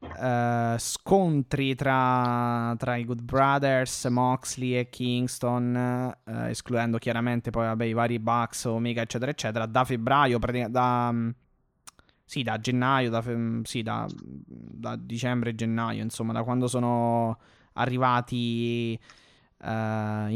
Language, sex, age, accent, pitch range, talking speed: Italian, male, 20-39, native, 115-130 Hz, 120 wpm